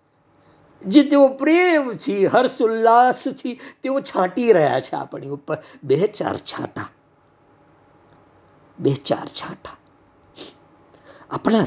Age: 50-69